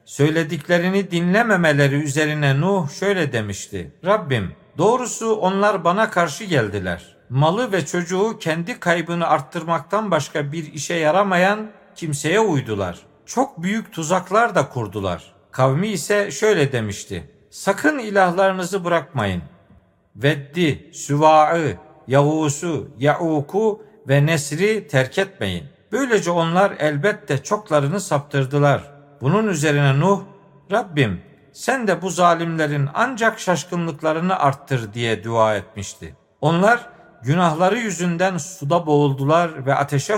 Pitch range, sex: 140-190 Hz, male